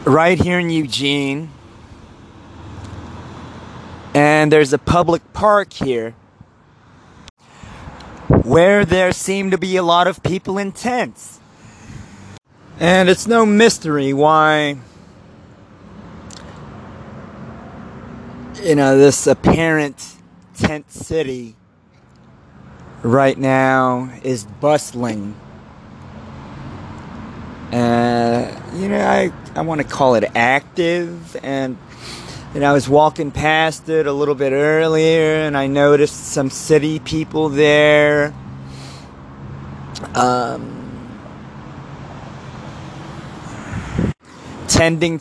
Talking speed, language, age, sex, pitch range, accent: 90 wpm, English, 30-49, male, 120-160 Hz, American